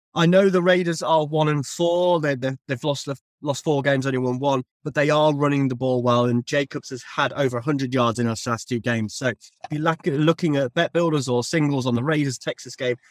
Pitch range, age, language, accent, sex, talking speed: 125-160 Hz, 30-49, English, British, male, 245 wpm